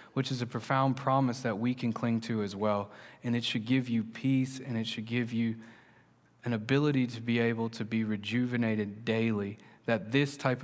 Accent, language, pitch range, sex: American, English, 115-135 Hz, male